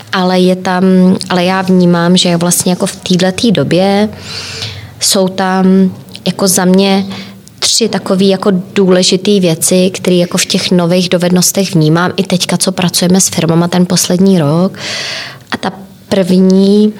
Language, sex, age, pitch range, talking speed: Czech, female, 20-39, 170-190 Hz, 145 wpm